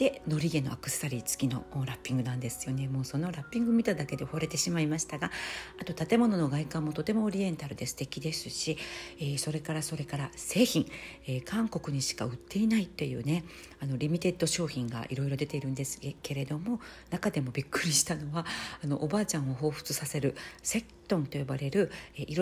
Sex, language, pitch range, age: female, Japanese, 140-180 Hz, 40-59